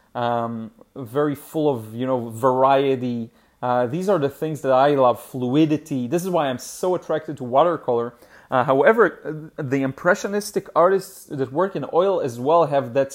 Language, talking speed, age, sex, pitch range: English, 170 wpm, 30-49, male, 130-160 Hz